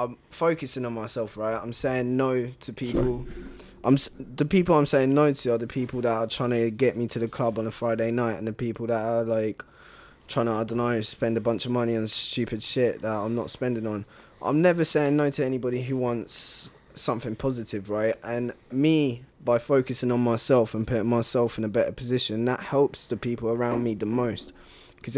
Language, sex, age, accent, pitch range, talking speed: English, male, 10-29, British, 115-135 Hz, 215 wpm